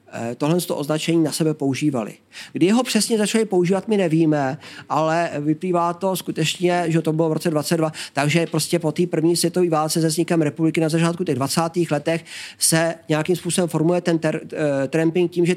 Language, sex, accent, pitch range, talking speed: Czech, male, native, 150-175 Hz, 175 wpm